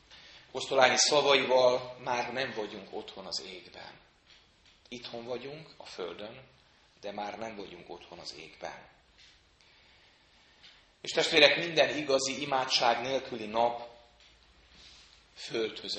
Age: 30-49